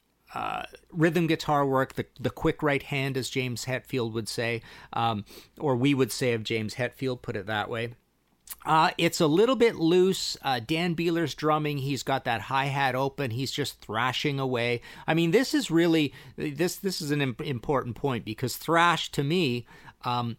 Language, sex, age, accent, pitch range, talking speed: English, male, 40-59, American, 115-155 Hz, 180 wpm